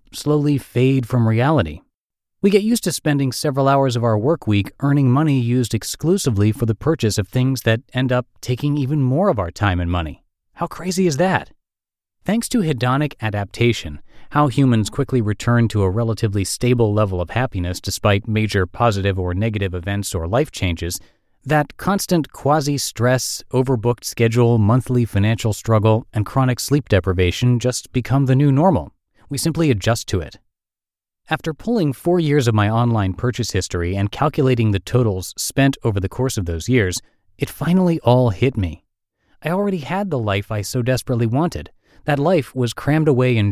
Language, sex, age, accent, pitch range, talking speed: English, male, 30-49, American, 105-140 Hz, 170 wpm